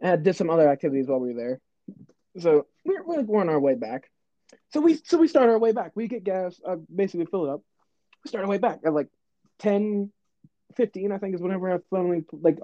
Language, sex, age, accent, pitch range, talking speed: English, male, 20-39, American, 165-245 Hz, 230 wpm